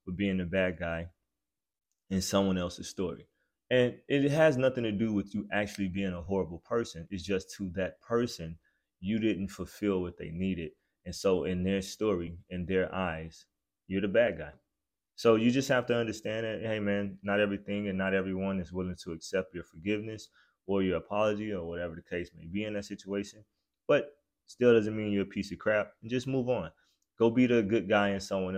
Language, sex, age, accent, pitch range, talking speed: English, male, 20-39, American, 90-110 Hz, 205 wpm